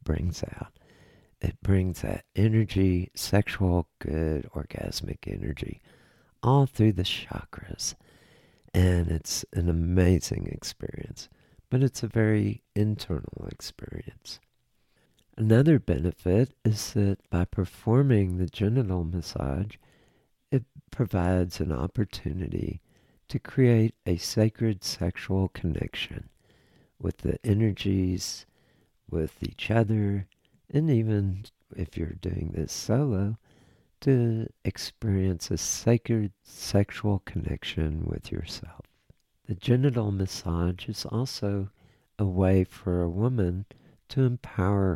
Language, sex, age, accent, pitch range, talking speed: English, male, 60-79, American, 90-115 Hz, 105 wpm